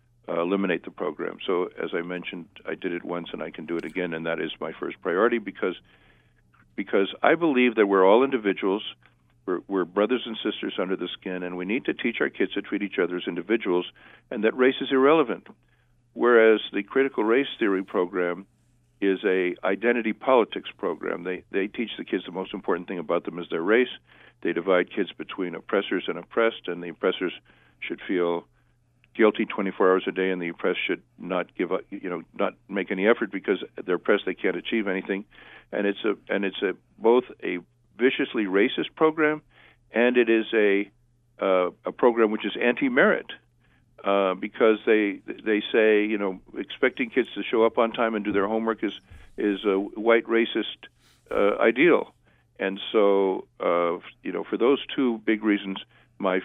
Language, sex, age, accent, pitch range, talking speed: English, male, 50-69, American, 95-115 Hz, 190 wpm